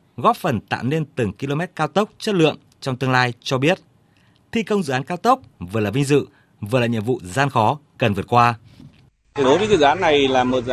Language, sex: Vietnamese, male